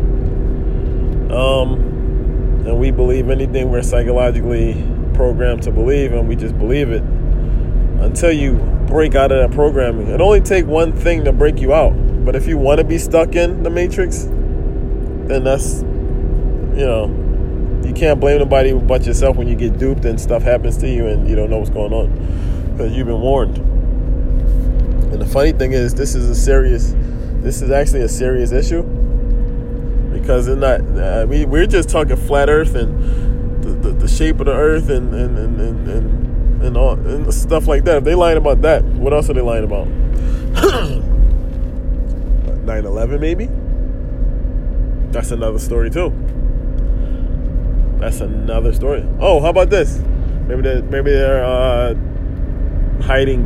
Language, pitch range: English, 90-130 Hz